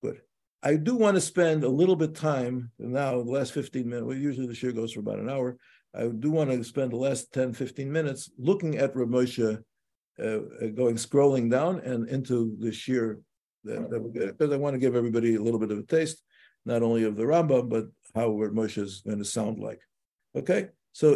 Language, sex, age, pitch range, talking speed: English, male, 60-79, 115-150 Hz, 205 wpm